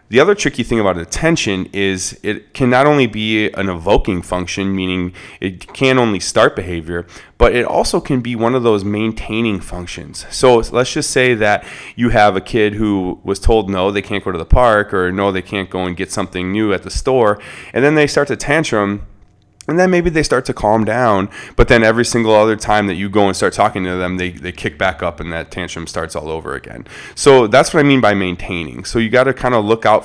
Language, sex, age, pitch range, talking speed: English, male, 20-39, 95-120 Hz, 230 wpm